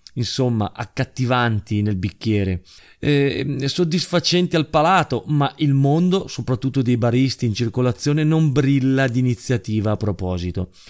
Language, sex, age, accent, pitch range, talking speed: Italian, male, 30-49, native, 115-155 Hz, 120 wpm